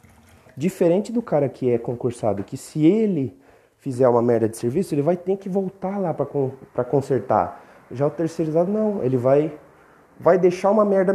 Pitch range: 105-160 Hz